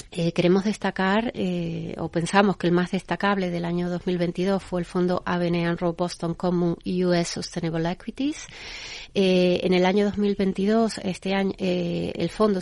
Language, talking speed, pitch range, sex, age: Spanish, 155 wpm, 175-200 Hz, female, 30-49